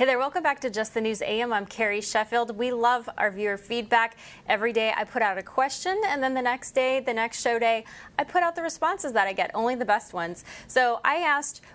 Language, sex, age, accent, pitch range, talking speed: English, female, 20-39, American, 205-260 Hz, 245 wpm